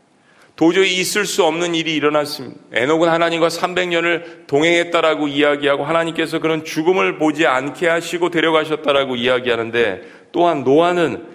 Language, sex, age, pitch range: Korean, male, 40-59, 150-180 Hz